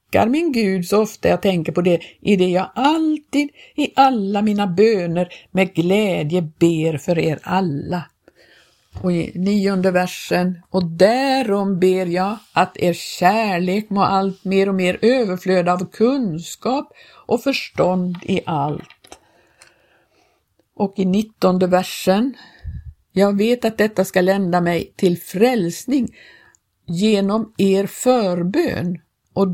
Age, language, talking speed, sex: 60-79, Swedish, 125 wpm, female